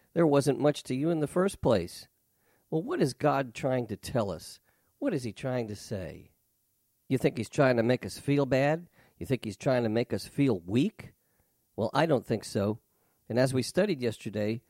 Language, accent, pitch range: English, American, 120-155 Hz